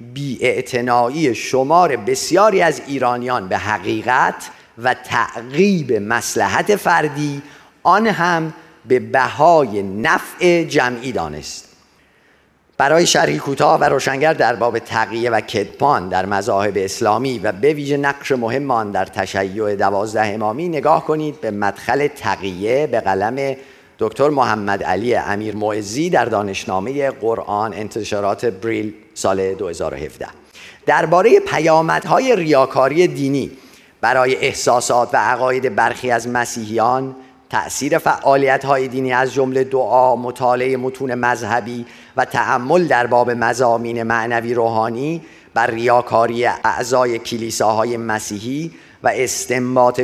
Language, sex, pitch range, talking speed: Persian, male, 115-135 Hz, 110 wpm